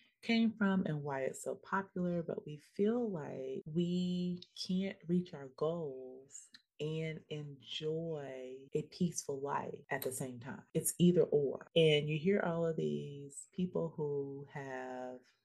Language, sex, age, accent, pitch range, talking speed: English, female, 30-49, American, 130-170 Hz, 145 wpm